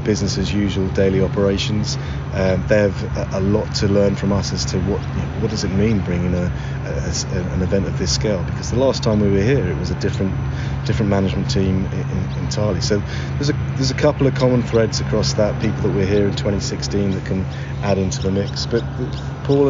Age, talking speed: 30-49, 230 wpm